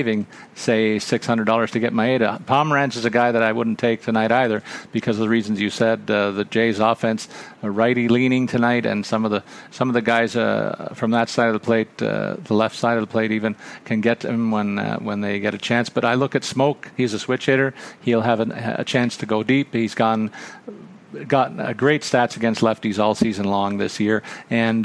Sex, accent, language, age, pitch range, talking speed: male, American, English, 50-69, 110-125 Hz, 225 wpm